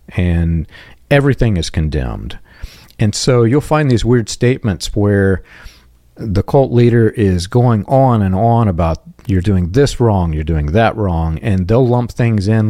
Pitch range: 85-120 Hz